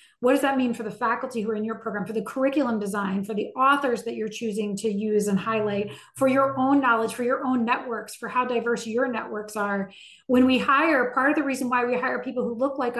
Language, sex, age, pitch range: English, female, 20-39, 220-265 Hz